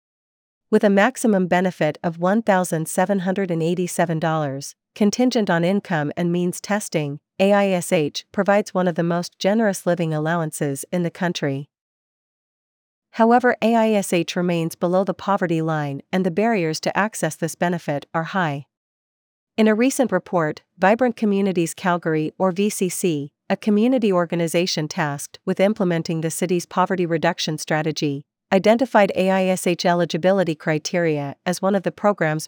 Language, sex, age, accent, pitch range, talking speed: English, female, 40-59, American, 160-195 Hz, 125 wpm